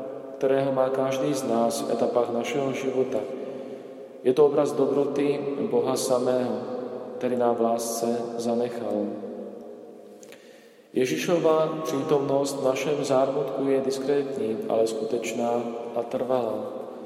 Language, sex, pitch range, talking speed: Slovak, male, 110-135 Hz, 110 wpm